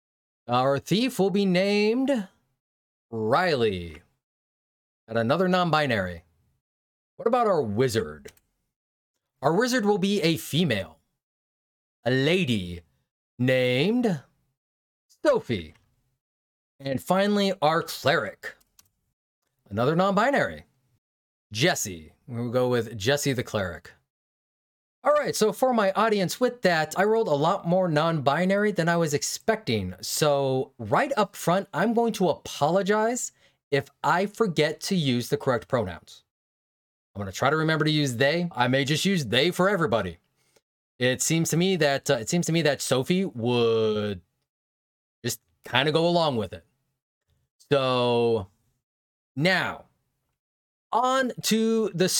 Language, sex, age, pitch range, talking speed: English, male, 30-49, 115-185 Hz, 130 wpm